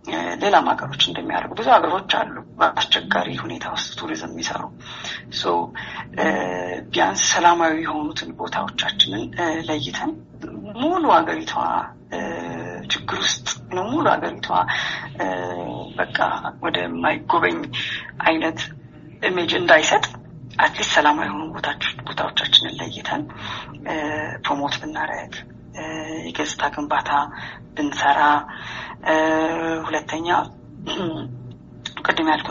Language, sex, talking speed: Amharic, female, 35 wpm